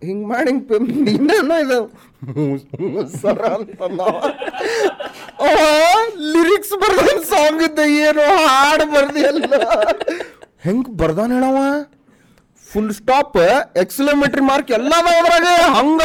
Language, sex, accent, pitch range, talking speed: Kannada, male, native, 210-320 Hz, 70 wpm